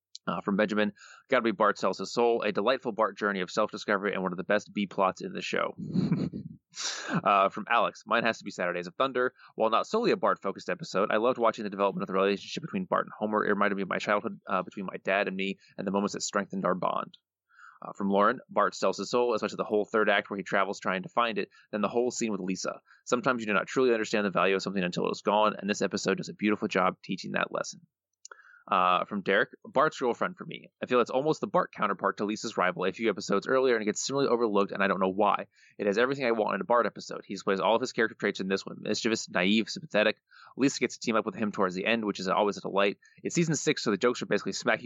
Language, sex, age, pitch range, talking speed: English, male, 20-39, 95-115 Hz, 270 wpm